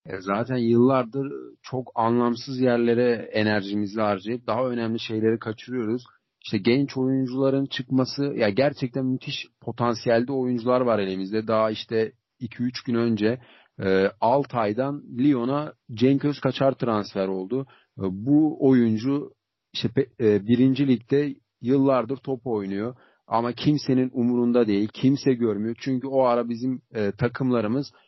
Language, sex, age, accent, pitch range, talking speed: Turkish, male, 40-59, native, 115-135 Hz, 125 wpm